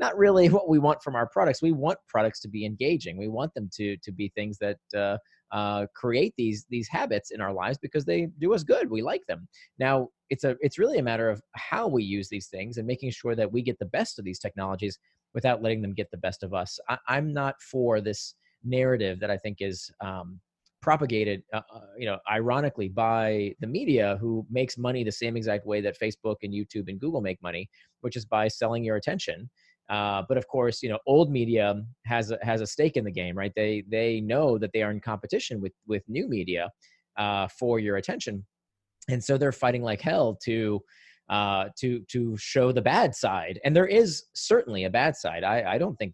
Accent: American